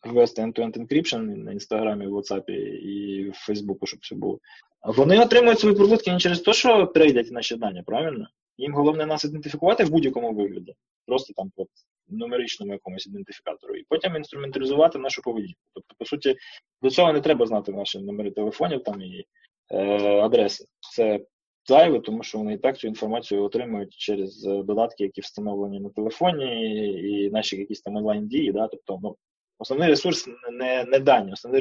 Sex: male